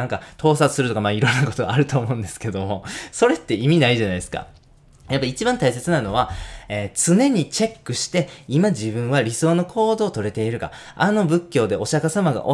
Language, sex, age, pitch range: Japanese, male, 20-39, 110-165 Hz